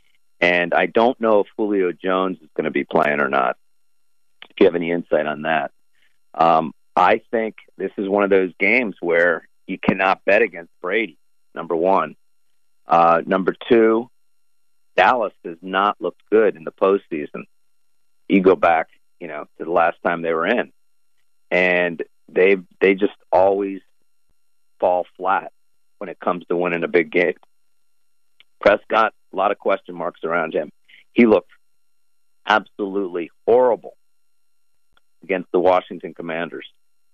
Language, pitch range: English, 75-105 Hz